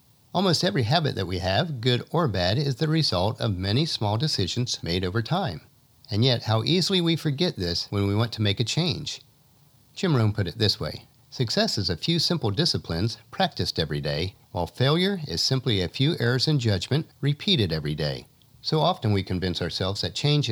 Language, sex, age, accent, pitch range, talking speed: English, male, 50-69, American, 100-140 Hz, 195 wpm